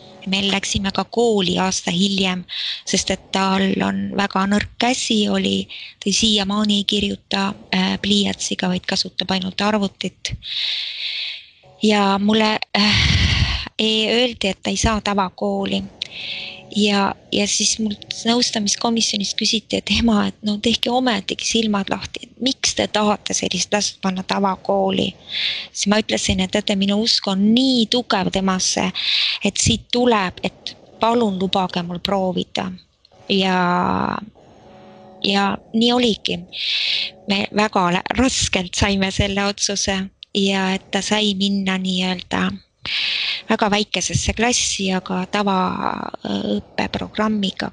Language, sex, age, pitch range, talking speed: English, female, 20-39, 185-210 Hz, 120 wpm